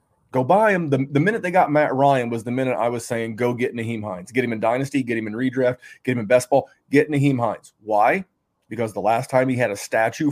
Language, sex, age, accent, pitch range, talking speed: English, male, 30-49, American, 125-165 Hz, 260 wpm